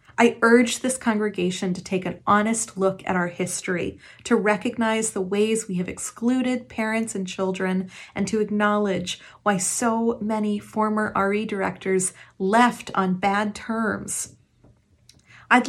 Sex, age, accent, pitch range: female, 30-49, American, 185-230 Hz